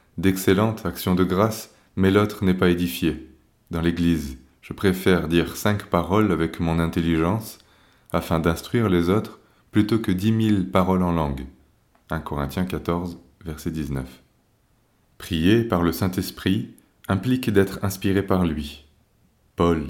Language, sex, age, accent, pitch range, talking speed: French, male, 30-49, French, 80-100 Hz, 135 wpm